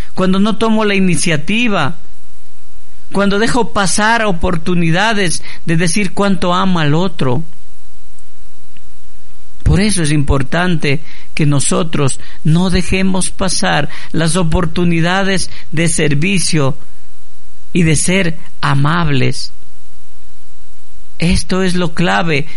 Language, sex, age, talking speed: Spanish, male, 50-69, 95 wpm